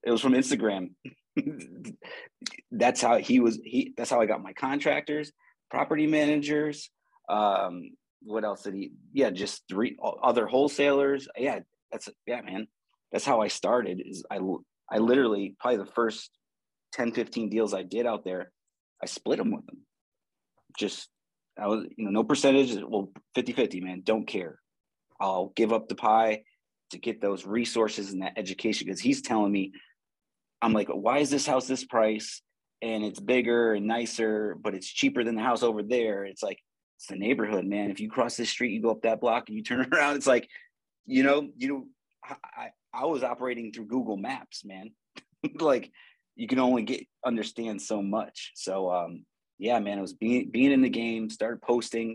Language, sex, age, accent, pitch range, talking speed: English, male, 30-49, American, 105-135 Hz, 180 wpm